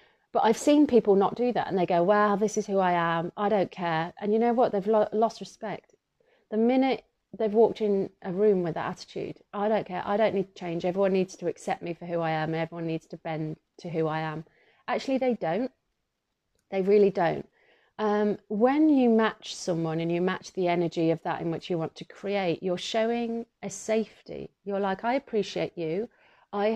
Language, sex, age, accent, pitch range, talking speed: English, female, 30-49, British, 170-210 Hz, 215 wpm